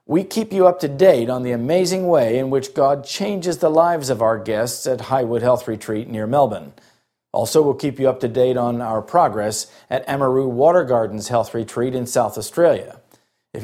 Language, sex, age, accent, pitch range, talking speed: English, male, 50-69, American, 120-170 Hz, 200 wpm